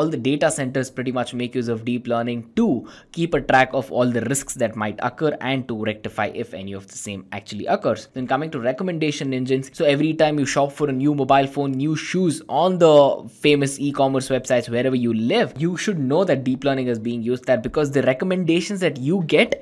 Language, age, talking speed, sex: English, 20-39, 225 wpm, male